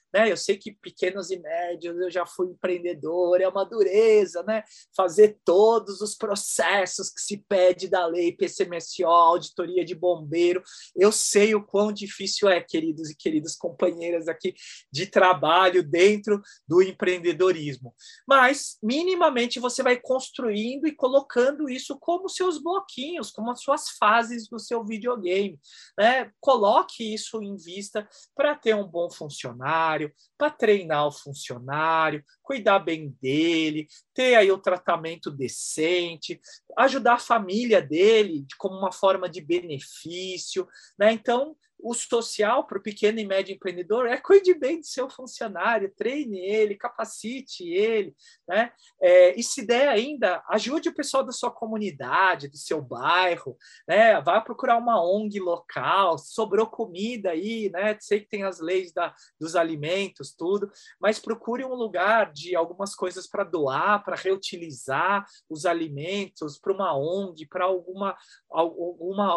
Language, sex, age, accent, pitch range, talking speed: Portuguese, male, 20-39, Brazilian, 175-240 Hz, 145 wpm